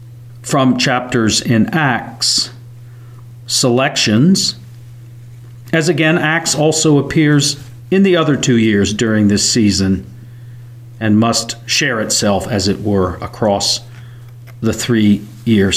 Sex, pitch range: male, 115-130 Hz